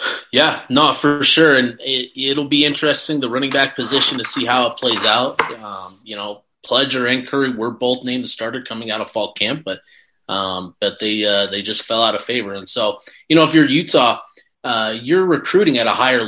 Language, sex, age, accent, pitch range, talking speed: English, male, 30-49, American, 110-145 Hz, 220 wpm